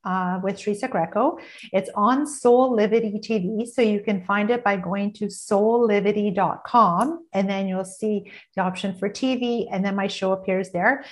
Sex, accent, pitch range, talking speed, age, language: female, American, 190-225 Hz, 175 wpm, 50-69, English